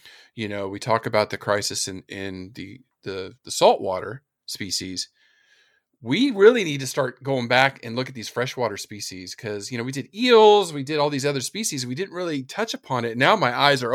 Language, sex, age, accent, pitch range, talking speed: English, male, 40-59, American, 110-145 Hz, 210 wpm